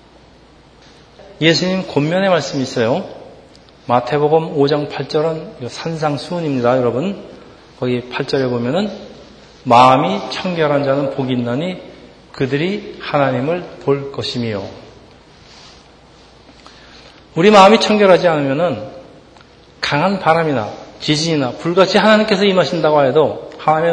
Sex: male